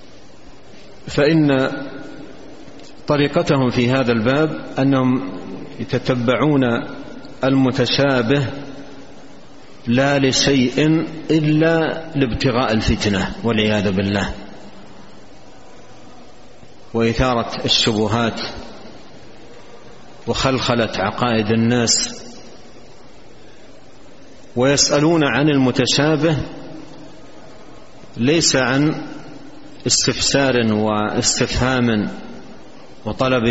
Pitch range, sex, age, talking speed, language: 115-140 Hz, male, 50-69, 50 wpm, Arabic